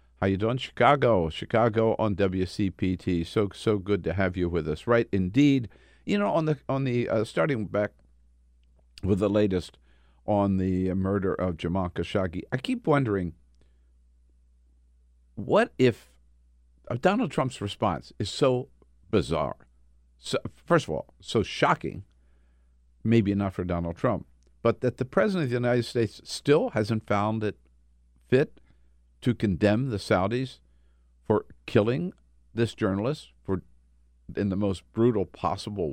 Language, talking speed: English, 140 wpm